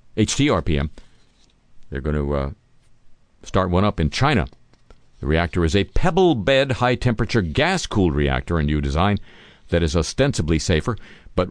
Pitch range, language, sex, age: 80-105 Hz, English, male, 50-69